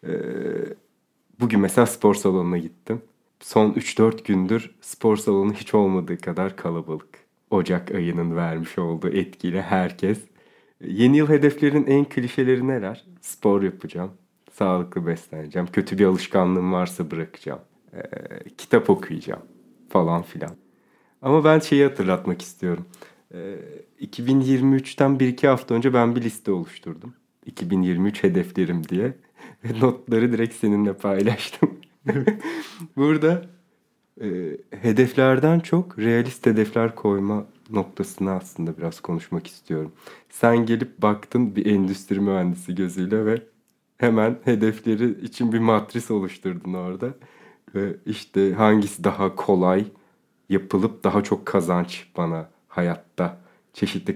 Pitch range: 90-120 Hz